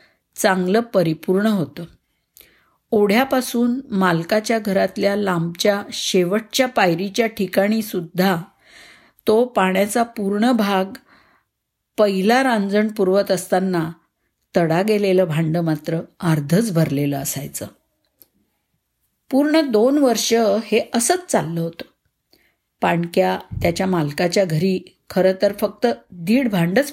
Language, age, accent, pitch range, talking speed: Marathi, 50-69, native, 170-225 Hz, 90 wpm